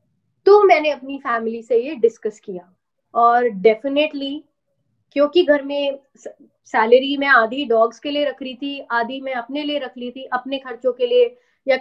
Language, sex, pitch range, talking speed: English, female, 240-295 Hz, 175 wpm